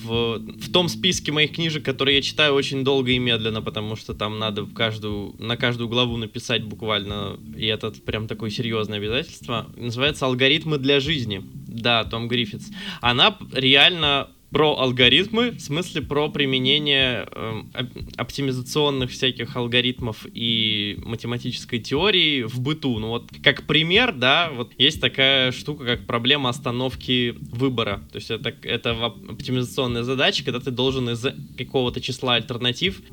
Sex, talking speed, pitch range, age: male, 140 wpm, 115-145 Hz, 20-39